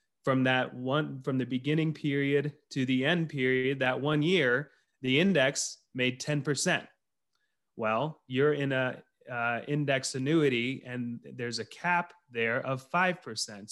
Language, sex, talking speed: English, male, 140 wpm